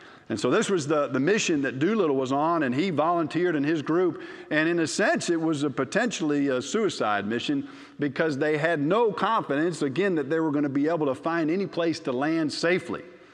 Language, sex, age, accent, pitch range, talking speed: English, male, 50-69, American, 150-195 Hz, 215 wpm